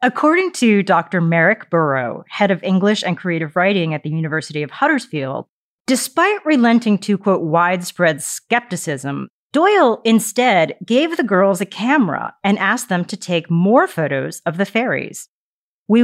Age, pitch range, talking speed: 40-59, 165-245 Hz, 150 wpm